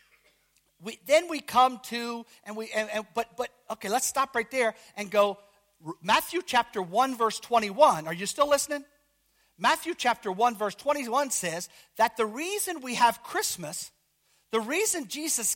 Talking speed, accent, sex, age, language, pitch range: 170 wpm, American, male, 50-69, English, 215-305 Hz